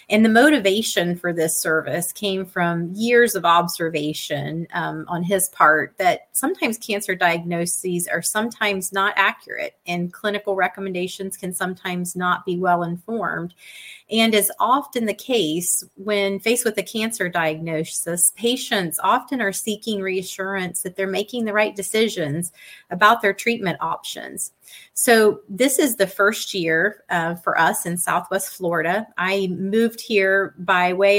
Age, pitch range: 30-49, 175-205 Hz